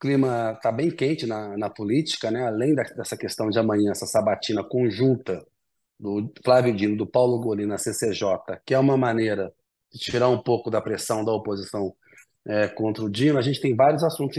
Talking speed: 190 wpm